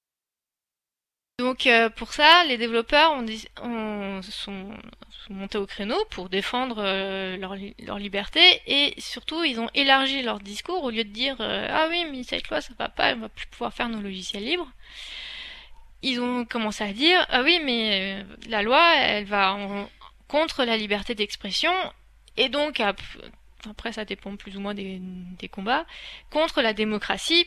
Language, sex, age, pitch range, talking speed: French, female, 20-39, 205-255 Hz, 180 wpm